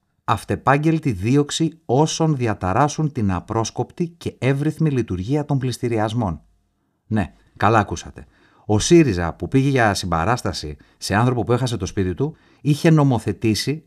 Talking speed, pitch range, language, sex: 125 wpm, 95-140 Hz, Greek, male